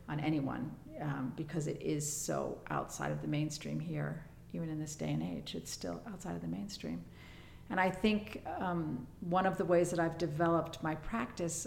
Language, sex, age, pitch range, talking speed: English, female, 50-69, 150-170 Hz, 190 wpm